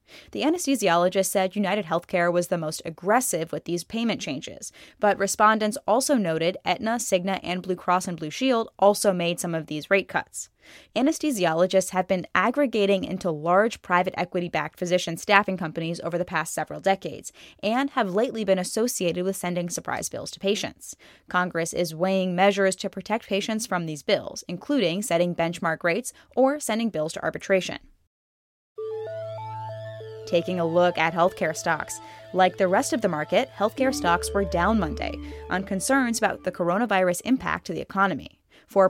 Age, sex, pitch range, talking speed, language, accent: 10-29, female, 170-205 Hz, 160 wpm, English, American